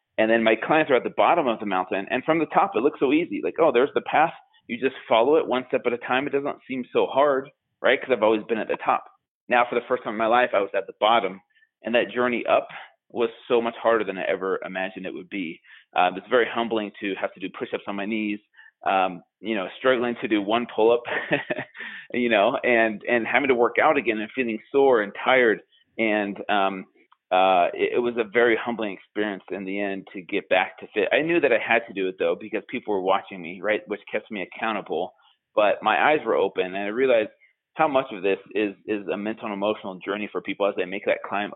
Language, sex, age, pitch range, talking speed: English, male, 30-49, 105-130 Hz, 250 wpm